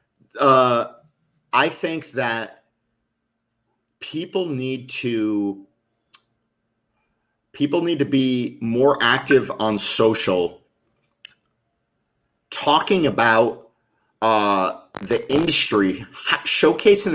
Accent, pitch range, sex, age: American, 105-150 Hz, male, 30-49